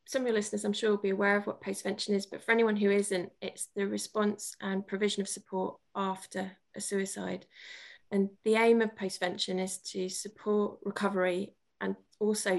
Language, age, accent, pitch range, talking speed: English, 20-39, British, 185-205 Hz, 185 wpm